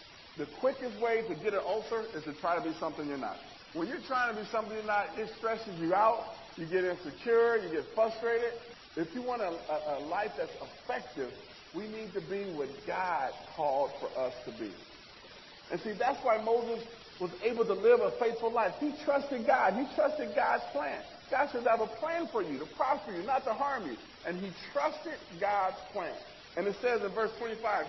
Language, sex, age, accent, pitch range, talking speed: English, male, 50-69, American, 170-235 Hz, 210 wpm